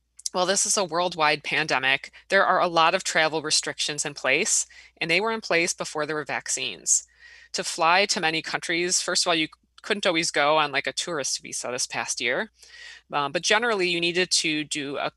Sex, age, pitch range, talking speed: female, 20-39, 155-200 Hz, 205 wpm